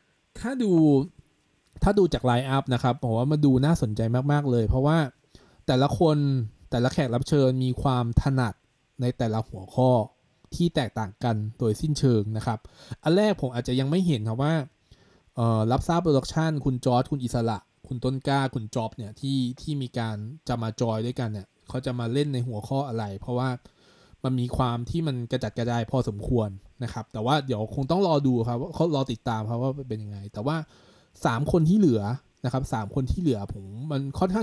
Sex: male